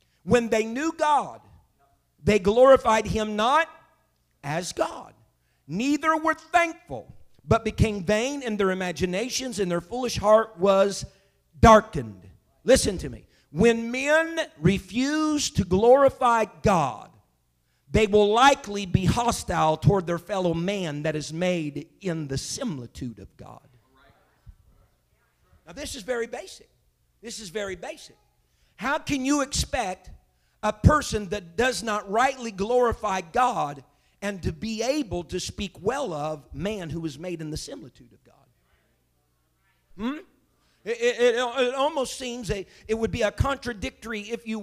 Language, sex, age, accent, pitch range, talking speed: English, male, 50-69, American, 175-255 Hz, 140 wpm